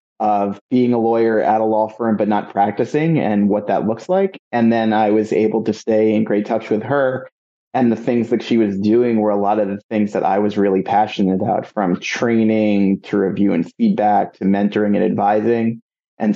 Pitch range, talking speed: 105-115 Hz, 215 wpm